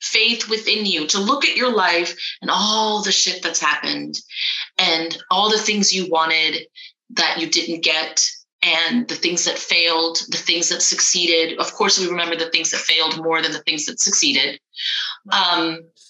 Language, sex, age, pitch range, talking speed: English, female, 30-49, 180-255 Hz, 180 wpm